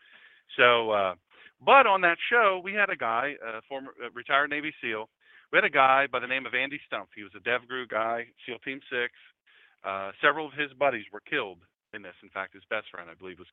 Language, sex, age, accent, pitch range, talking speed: English, male, 40-59, American, 110-150 Hz, 225 wpm